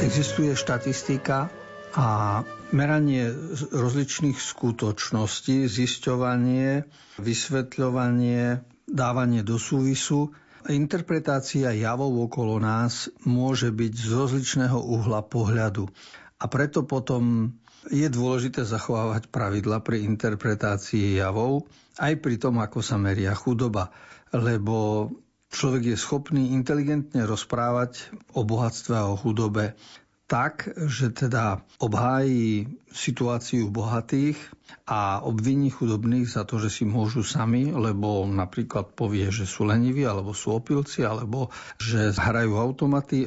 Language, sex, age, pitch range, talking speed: Slovak, male, 60-79, 110-135 Hz, 105 wpm